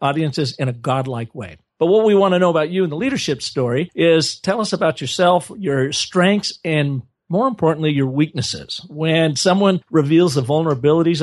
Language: English